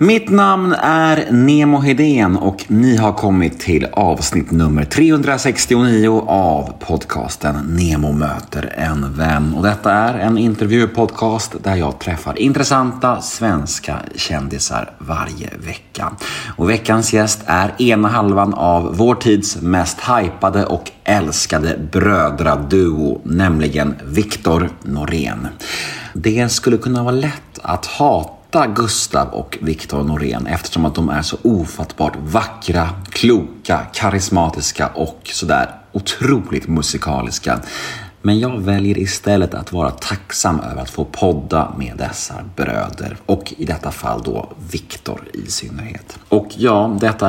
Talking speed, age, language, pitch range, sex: 125 wpm, 30-49, Swedish, 80-115 Hz, male